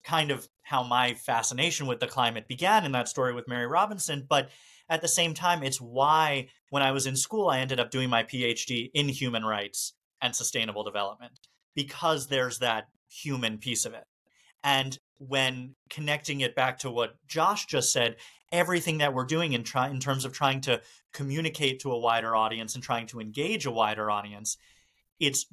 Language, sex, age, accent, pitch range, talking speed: English, male, 30-49, American, 120-140 Hz, 190 wpm